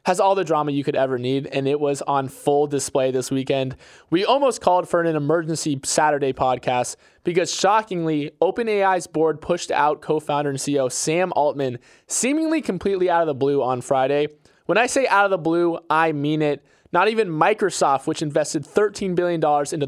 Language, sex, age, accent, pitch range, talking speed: English, male, 20-39, American, 135-175 Hz, 185 wpm